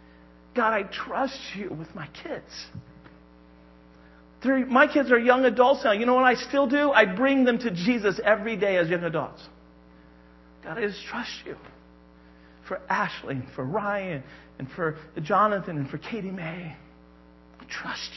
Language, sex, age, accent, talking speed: English, male, 40-59, American, 155 wpm